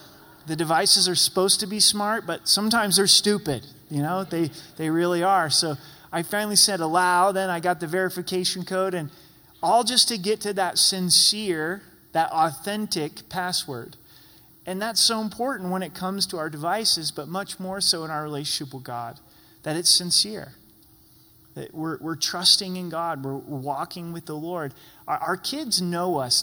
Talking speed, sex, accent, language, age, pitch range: 175 wpm, male, American, English, 30-49, 150-190 Hz